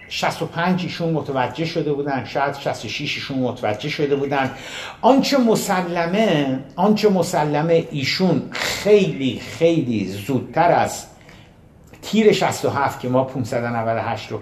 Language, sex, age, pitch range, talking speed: Persian, male, 60-79, 125-165 Hz, 110 wpm